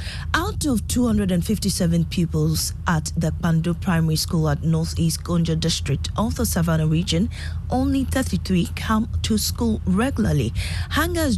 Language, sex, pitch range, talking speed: English, female, 150-195 Hz, 130 wpm